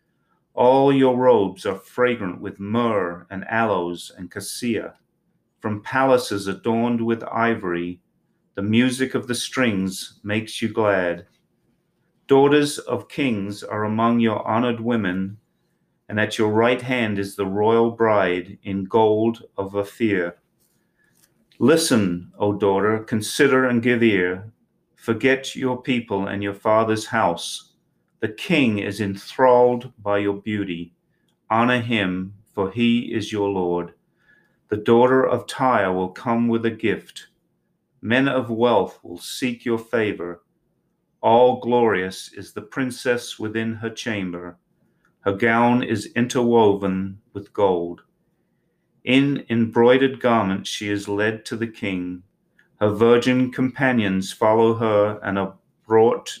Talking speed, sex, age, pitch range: 130 wpm, male, 40-59, 100-120 Hz